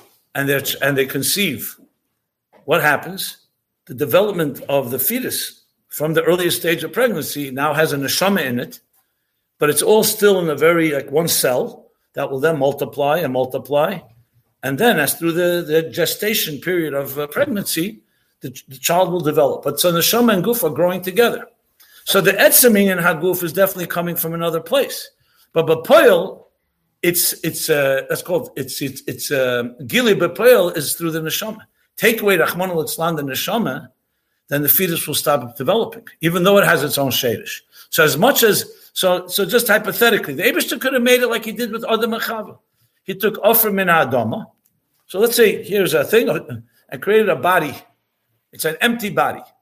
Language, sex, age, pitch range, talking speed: English, male, 60-79, 145-210 Hz, 180 wpm